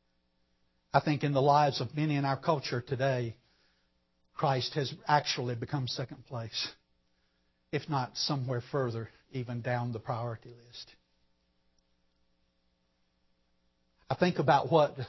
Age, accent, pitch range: 60-79, American, 105-170 Hz